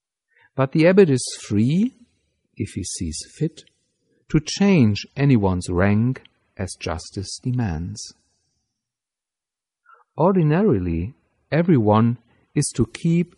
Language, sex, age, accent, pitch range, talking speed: English, male, 50-69, German, 100-145 Hz, 95 wpm